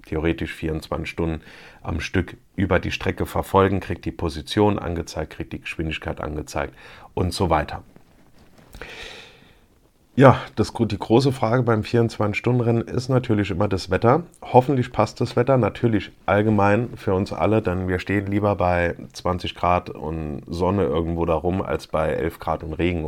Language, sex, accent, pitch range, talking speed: German, male, German, 80-100 Hz, 160 wpm